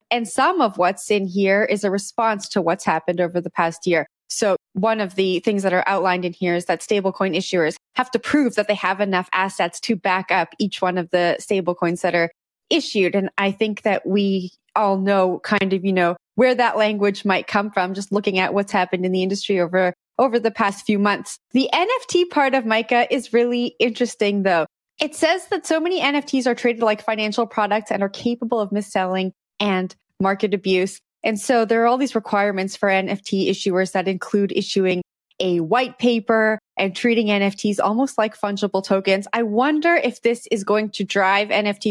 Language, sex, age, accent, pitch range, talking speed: English, female, 20-39, American, 185-225 Hz, 200 wpm